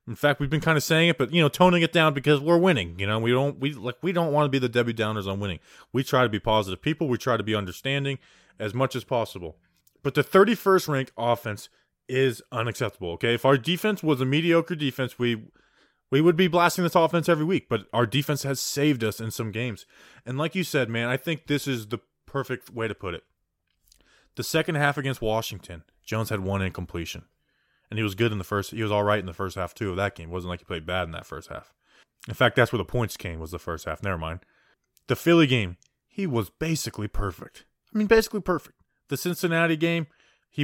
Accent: American